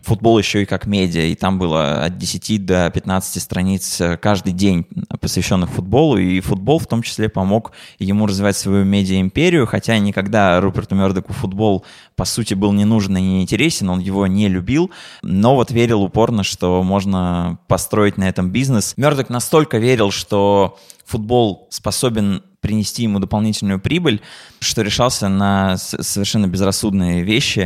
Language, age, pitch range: Russian, 20-39, 95-115 Hz